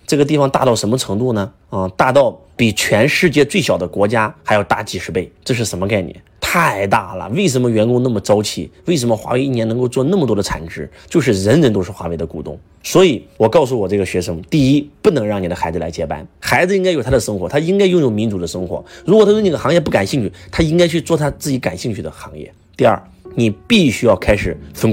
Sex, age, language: male, 30-49, Chinese